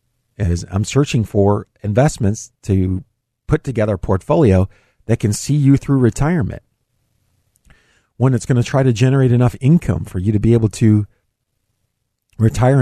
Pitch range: 100-130 Hz